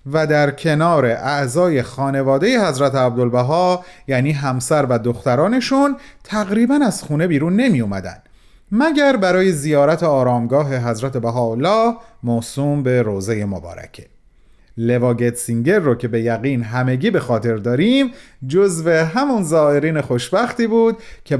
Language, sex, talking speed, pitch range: Persian, male, 120 wpm, 125-205 Hz